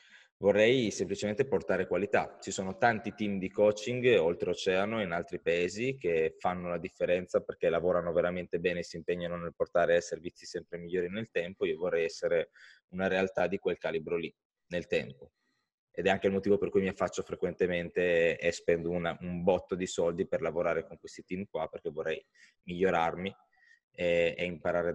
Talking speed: 170 wpm